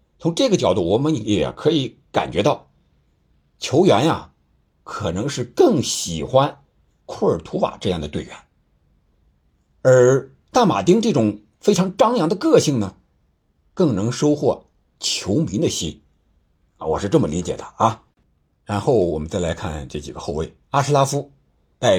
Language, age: Chinese, 60-79